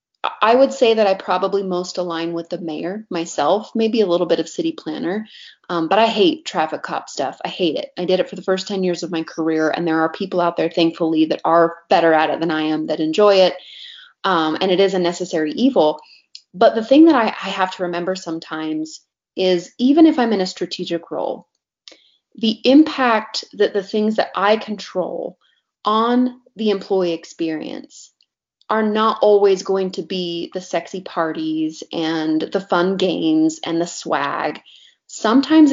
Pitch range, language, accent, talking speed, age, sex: 170-220 Hz, English, American, 190 wpm, 30-49, female